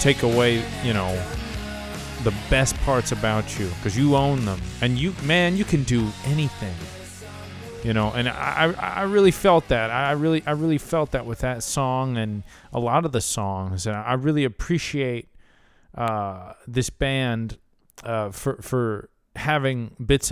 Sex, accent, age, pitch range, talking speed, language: male, American, 30-49, 100-130 Hz, 160 wpm, English